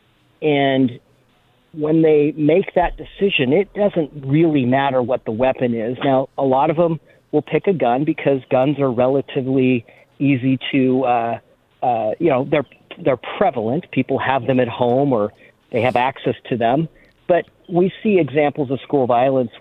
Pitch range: 125-160 Hz